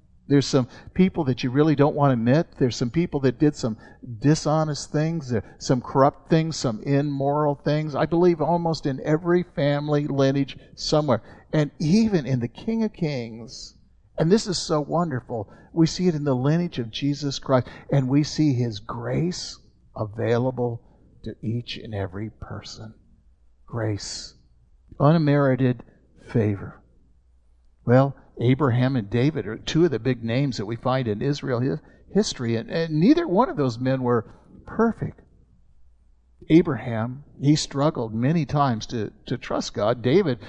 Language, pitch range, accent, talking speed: English, 115-155 Hz, American, 150 wpm